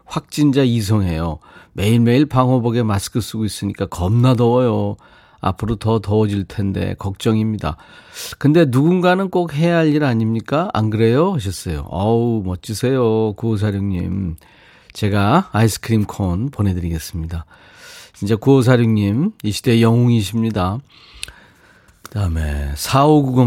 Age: 40-59